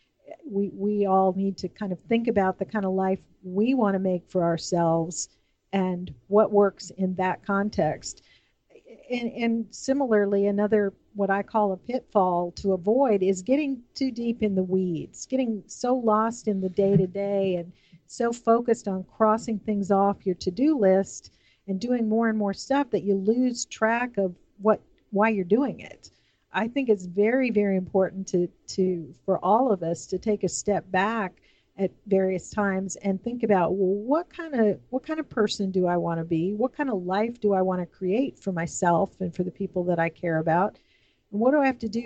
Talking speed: 195 wpm